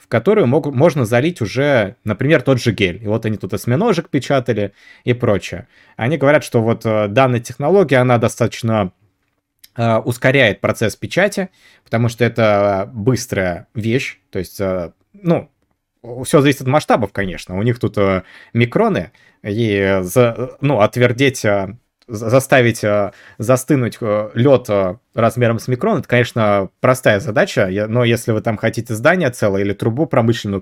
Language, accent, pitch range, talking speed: Russian, native, 105-130 Hz, 130 wpm